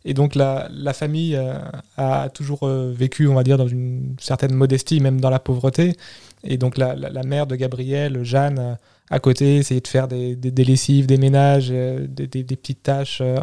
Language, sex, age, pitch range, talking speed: French, male, 20-39, 130-140 Hz, 195 wpm